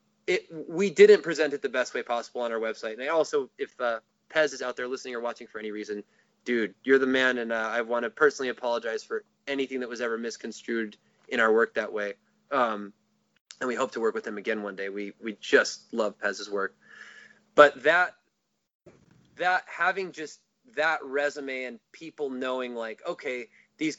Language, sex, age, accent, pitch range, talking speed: English, male, 20-39, American, 120-175 Hz, 195 wpm